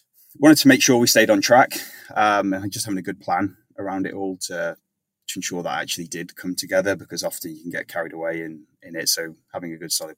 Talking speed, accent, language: 240 wpm, British, English